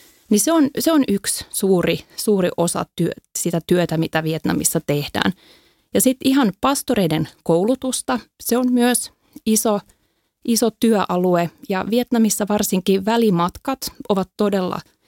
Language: Finnish